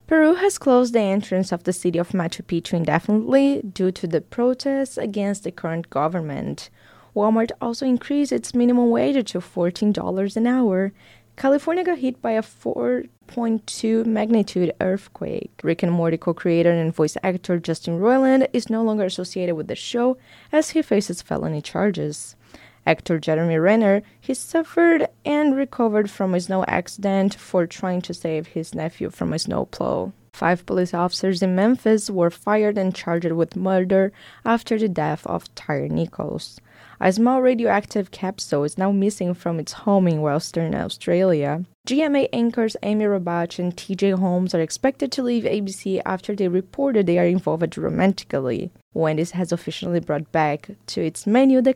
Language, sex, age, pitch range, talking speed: English, female, 20-39, 170-225 Hz, 160 wpm